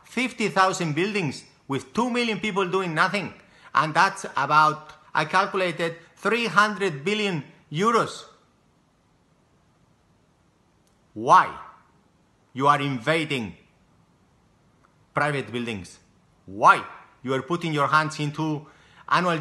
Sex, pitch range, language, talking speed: male, 155-230 Hz, English, 95 wpm